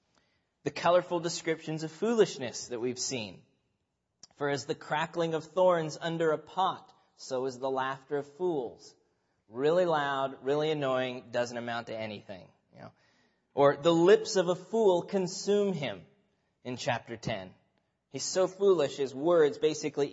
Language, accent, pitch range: English, American, 135-185 Hz